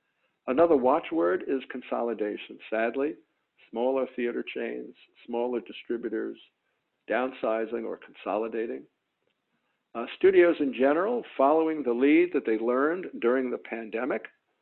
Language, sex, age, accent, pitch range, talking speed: English, male, 50-69, American, 110-140 Hz, 105 wpm